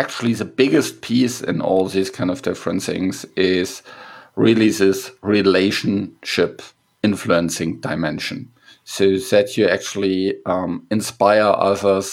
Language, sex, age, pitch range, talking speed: English, male, 50-69, 100-125 Hz, 120 wpm